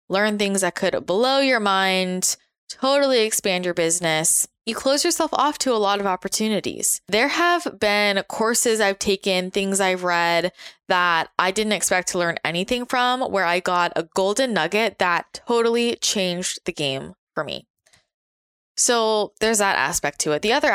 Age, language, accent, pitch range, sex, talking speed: 20-39, English, American, 165-210 Hz, female, 170 wpm